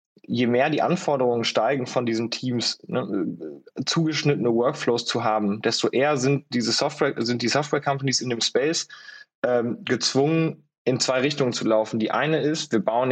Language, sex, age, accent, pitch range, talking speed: German, male, 20-39, German, 115-140 Hz, 165 wpm